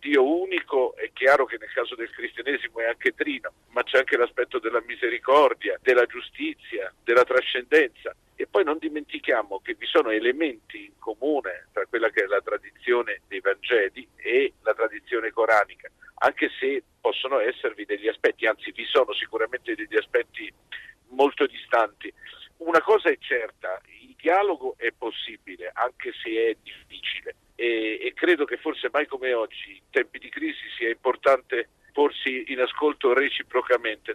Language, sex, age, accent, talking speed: Italian, male, 50-69, native, 150 wpm